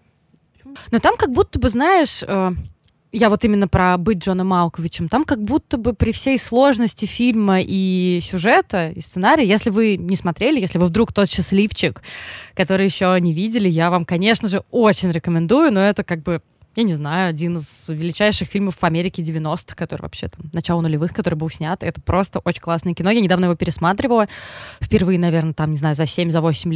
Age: 20-39